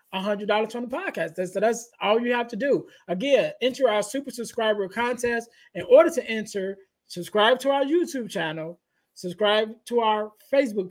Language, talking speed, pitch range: English, 165 wpm, 185-225 Hz